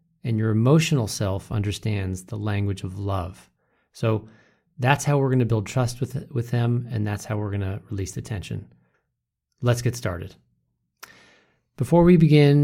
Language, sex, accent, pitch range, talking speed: English, male, American, 100-120 Hz, 160 wpm